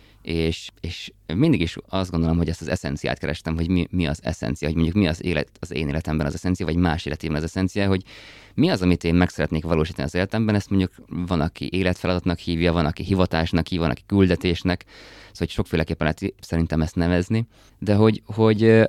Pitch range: 80-95 Hz